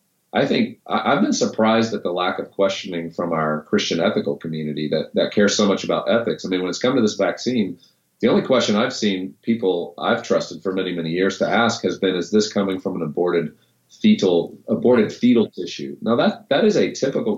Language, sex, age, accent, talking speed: English, male, 40-59, American, 215 wpm